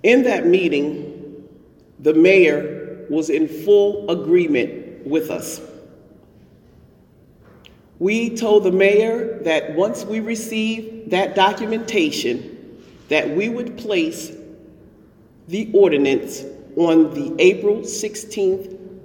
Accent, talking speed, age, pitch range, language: American, 100 wpm, 40-59, 150-215 Hz, English